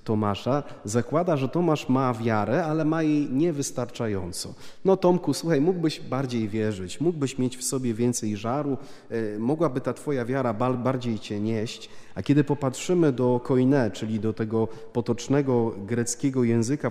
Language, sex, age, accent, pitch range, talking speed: Polish, male, 30-49, native, 110-145 Hz, 140 wpm